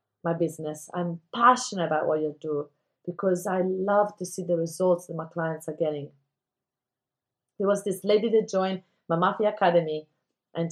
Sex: female